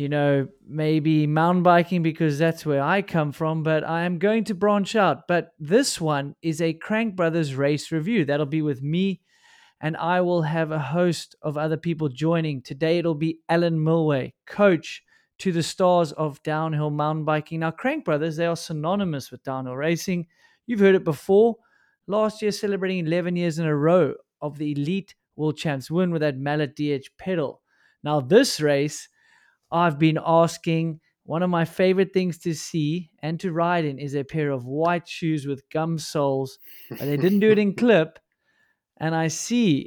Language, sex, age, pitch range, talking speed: English, male, 30-49, 155-185 Hz, 185 wpm